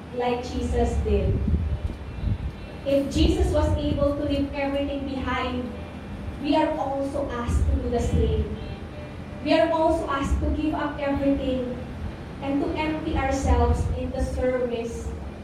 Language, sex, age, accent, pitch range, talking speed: English, female, 20-39, Filipino, 230-315 Hz, 130 wpm